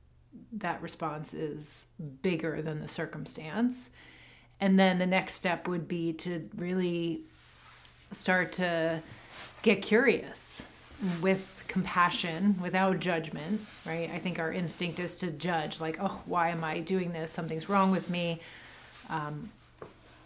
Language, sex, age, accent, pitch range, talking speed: English, female, 30-49, American, 160-195 Hz, 130 wpm